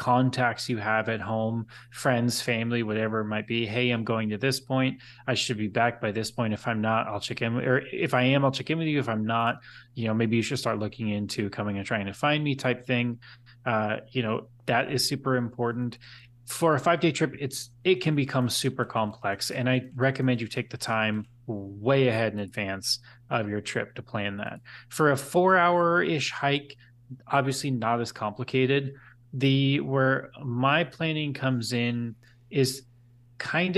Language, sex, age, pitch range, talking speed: English, male, 20-39, 115-135 Hz, 195 wpm